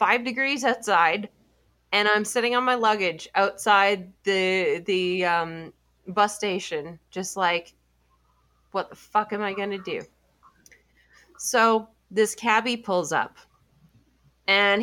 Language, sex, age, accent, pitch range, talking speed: English, female, 30-49, American, 165-220 Hz, 125 wpm